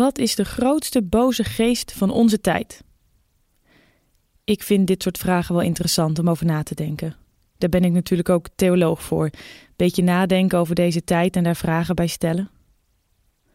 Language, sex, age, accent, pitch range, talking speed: Dutch, female, 20-39, Dutch, 180-225 Hz, 170 wpm